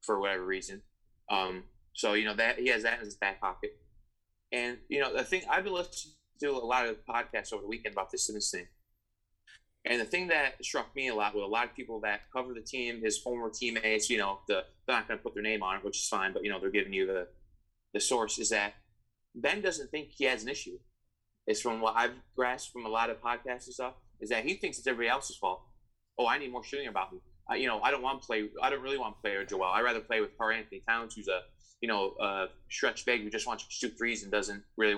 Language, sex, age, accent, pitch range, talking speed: English, male, 20-39, American, 105-175 Hz, 260 wpm